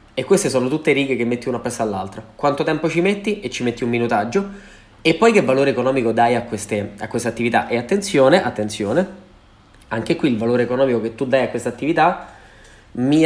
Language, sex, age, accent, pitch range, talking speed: Italian, male, 20-39, native, 115-155 Hz, 205 wpm